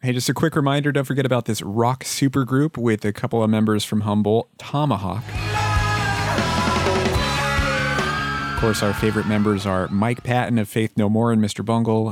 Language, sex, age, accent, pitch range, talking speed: English, male, 30-49, American, 105-125 Hz, 170 wpm